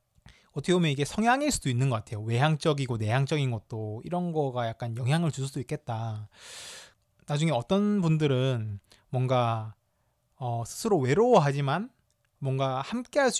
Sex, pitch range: male, 120-180 Hz